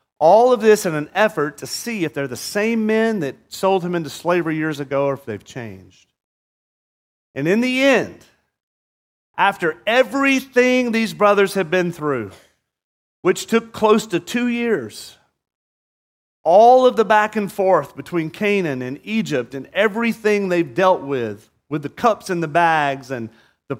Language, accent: English, American